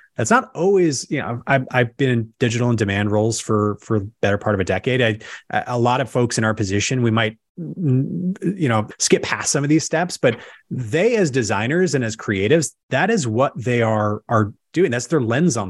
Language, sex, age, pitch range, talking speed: English, male, 30-49, 105-130 Hz, 220 wpm